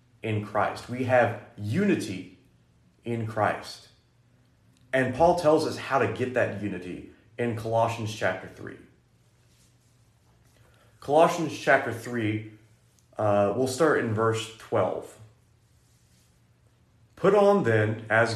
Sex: male